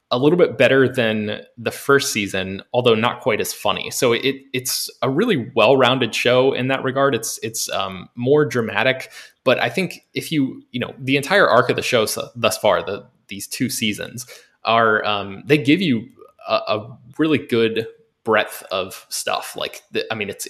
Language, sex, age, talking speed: English, male, 20-39, 190 wpm